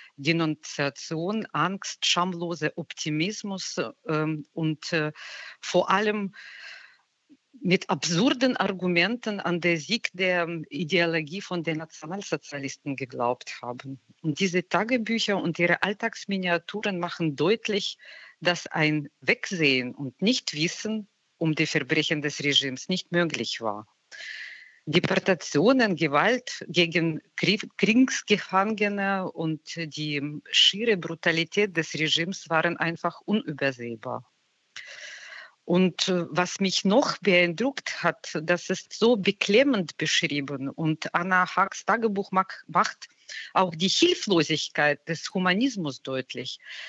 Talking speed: 95 wpm